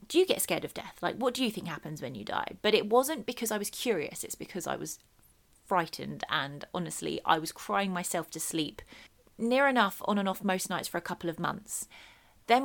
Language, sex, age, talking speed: English, female, 30-49, 230 wpm